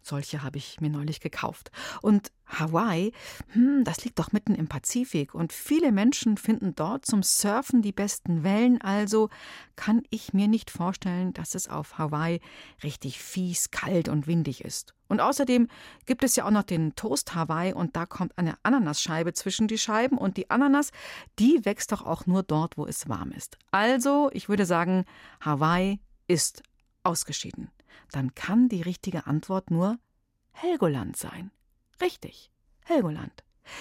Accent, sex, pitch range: German, female, 160-230 Hz